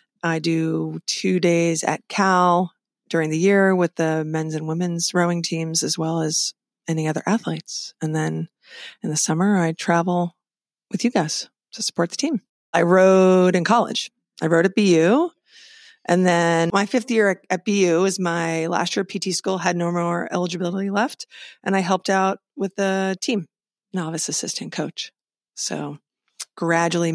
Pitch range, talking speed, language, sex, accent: 170-205 Hz, 165 wpm, English, female, American